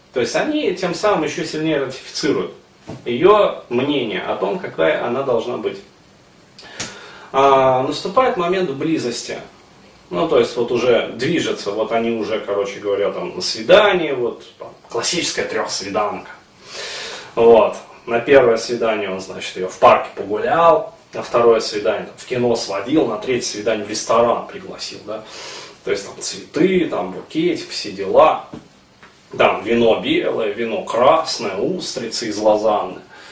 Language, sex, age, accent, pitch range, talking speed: Russian, male, 30-49, native, 105-165 Hz, 135 wpm